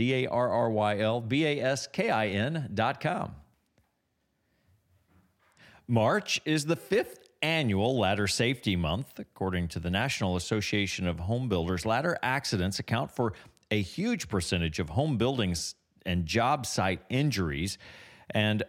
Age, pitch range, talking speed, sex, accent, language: 40-59, 95-130 Hz, 145 wpm, male, American, English